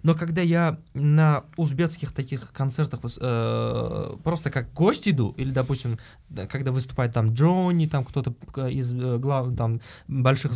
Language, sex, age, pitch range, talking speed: Russian, male, 20-39, 135-175 Hz, 135 wpm